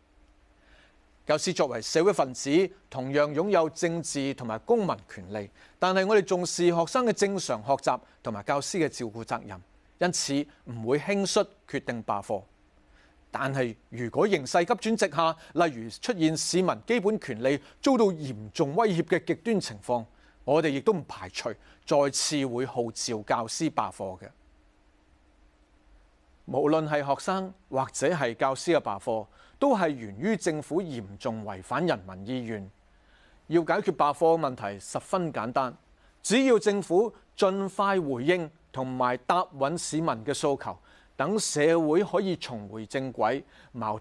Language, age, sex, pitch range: Chinese, 30-49, male, 110-175 Hz